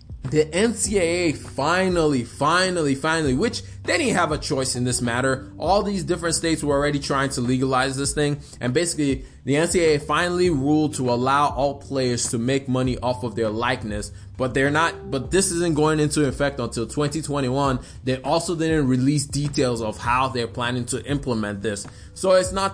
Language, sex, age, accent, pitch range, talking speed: English, male, 20-39, American, 120-150 Hz, 180 wpm